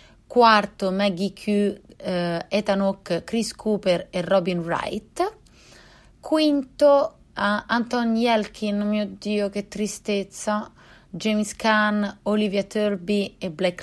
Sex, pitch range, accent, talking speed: female, 175-215 Hz, native, 110 wpm